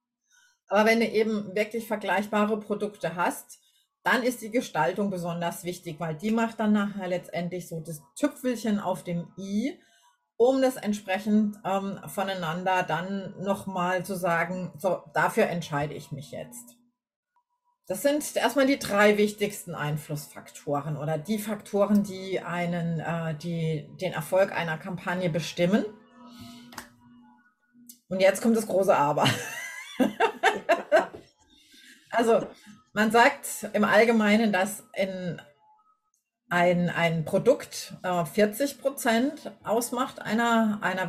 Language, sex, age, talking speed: German, female, 30-49, 120 wpm